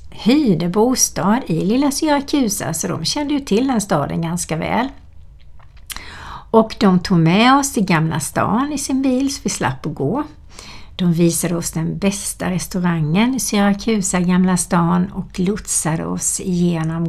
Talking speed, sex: 155 wpm, female